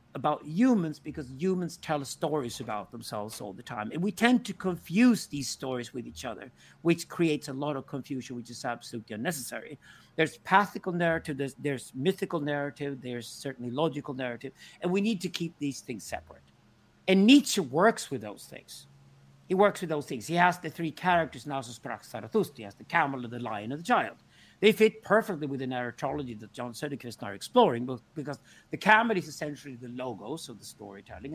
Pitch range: 125-180 Hz